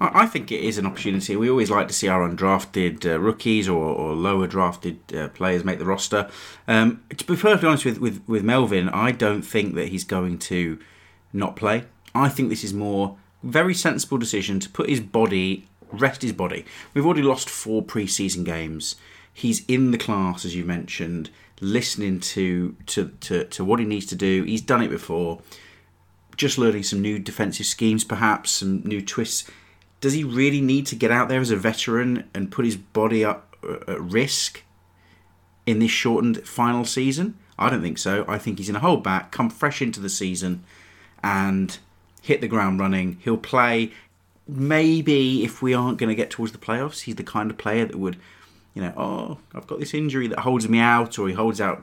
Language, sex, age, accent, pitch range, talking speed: English, male, 30-49, British, 95-120 Hz, 200 wpm